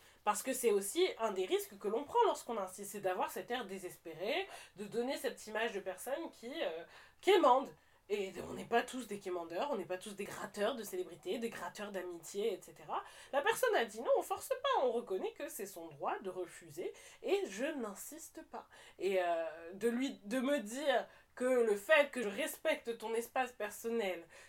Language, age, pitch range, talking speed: French, 20-39, 190-265 Hz, 200 wpm